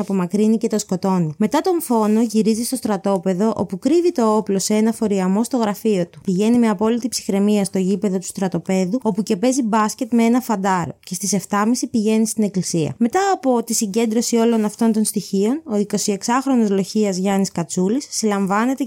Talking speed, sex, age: 175 wpm, female, 20-39